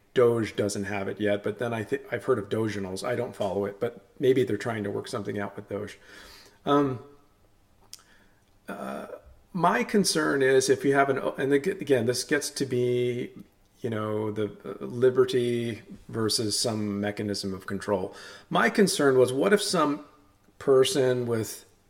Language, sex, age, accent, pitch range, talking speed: English, male, 40-59, American, 100-130 Hz, 165 wpm